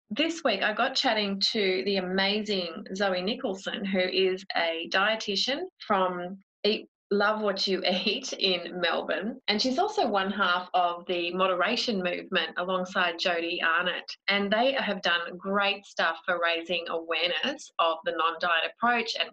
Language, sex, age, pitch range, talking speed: English, female, 30-49, 180-225 Hz, 150 wpm